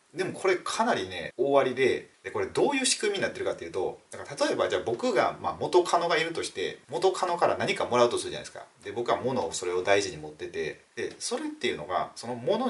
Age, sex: 30-49, male